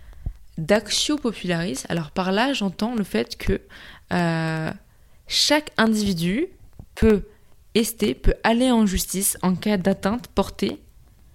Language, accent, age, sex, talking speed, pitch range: French, French, 20-39, female, 115 wpm, 160-205 Hz